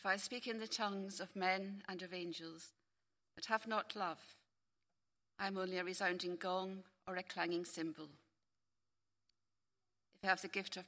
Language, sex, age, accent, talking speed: English, female, 60-79, British, 170 wpm